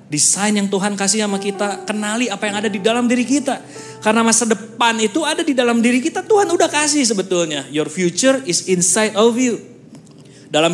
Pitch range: 170-220 Hz